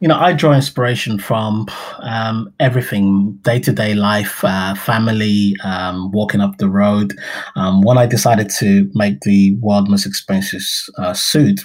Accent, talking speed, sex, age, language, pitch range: British, 150 wpm, male, 20-39, English, 100-115 Hz